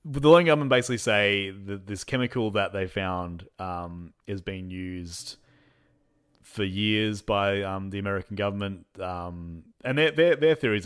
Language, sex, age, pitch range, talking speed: English, male, 30-49, 90-110 Hz, 155 wpm